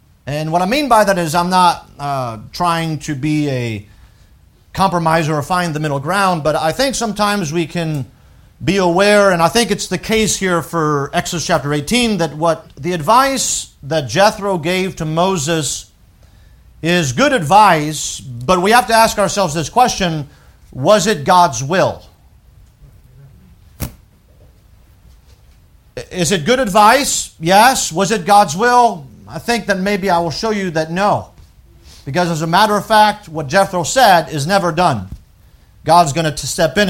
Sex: male